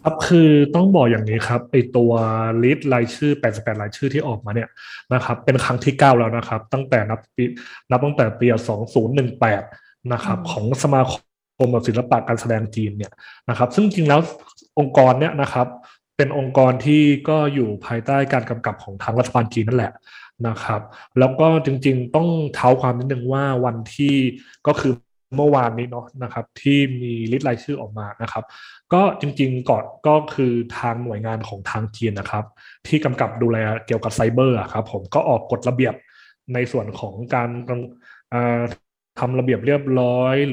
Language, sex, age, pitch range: Thai, male, 20-39, 115-135 Hz